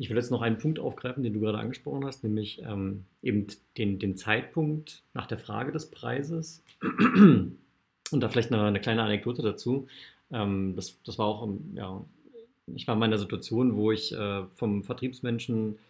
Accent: German